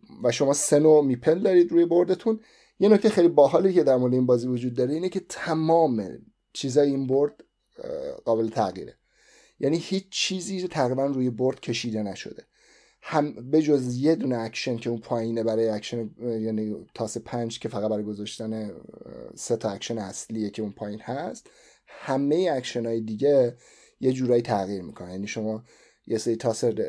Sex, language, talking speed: male, Persian, 155 wpm